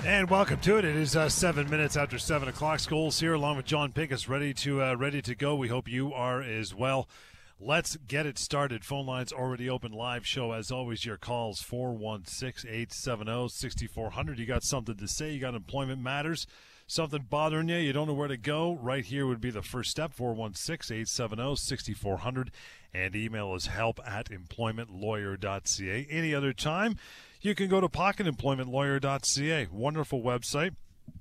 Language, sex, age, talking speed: English, male, 40-59, 165 wpm